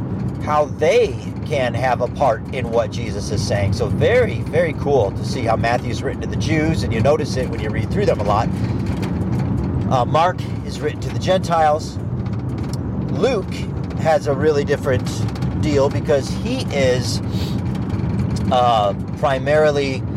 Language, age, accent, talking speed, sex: English, 40-59, American, 155 wpm, male